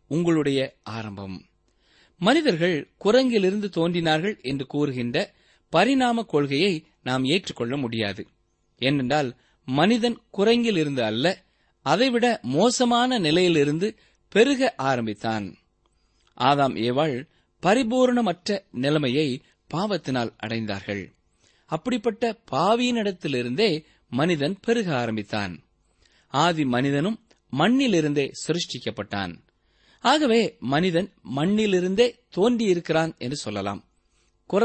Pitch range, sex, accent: 120-200 Hz, male, native